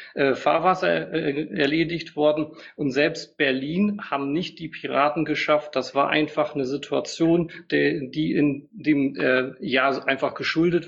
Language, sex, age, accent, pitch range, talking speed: German, male, 40-59, German, 135-160 Hz, 125 wpm